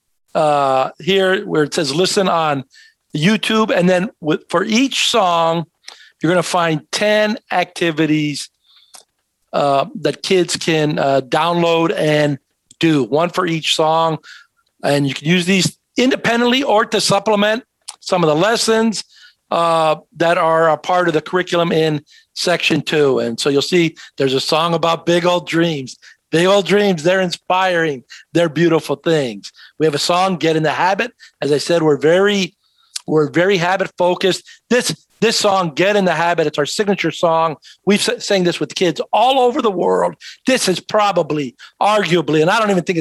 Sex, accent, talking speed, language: male, American, 170 wpm, English